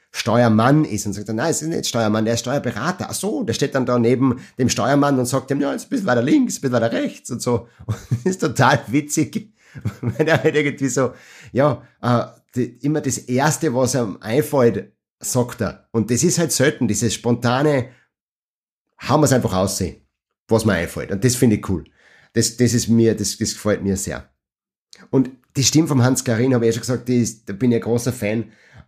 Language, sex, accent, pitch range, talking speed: German, male, German, 100-130 Hz, 210 wpm